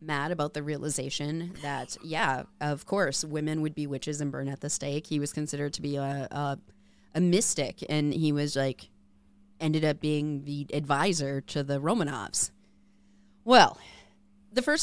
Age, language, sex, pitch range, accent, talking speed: 30-49, English, female, 140-200 Hz, American, 165 wpm